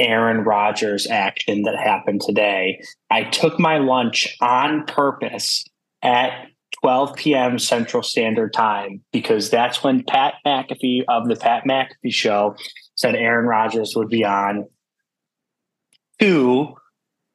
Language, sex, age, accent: English, male, 20-39, American